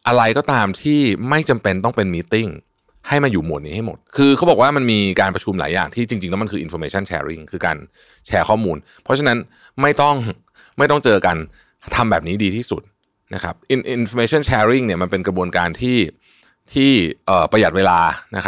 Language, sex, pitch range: Thai, male, 90-120 Hz